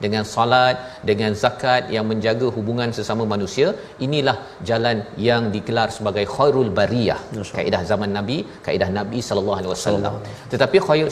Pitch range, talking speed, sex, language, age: 105-130 Hz, 140 wpm, male, Malayalam, 40-59